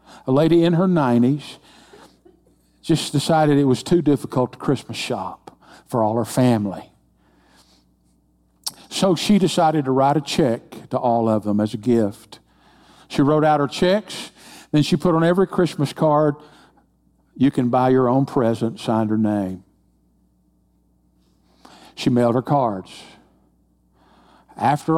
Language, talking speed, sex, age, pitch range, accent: English, 140 wpm, male, 50-69, 110-165 Hz, American